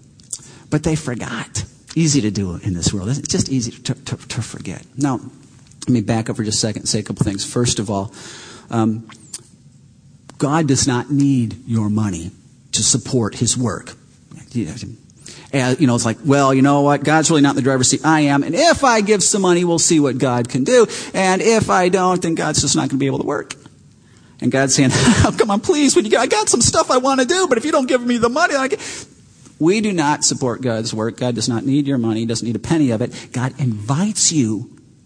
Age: 40-59